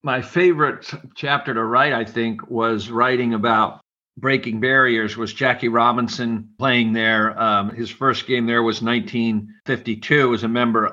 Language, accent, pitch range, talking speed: English, American, 115-130 Hz, 150 wpm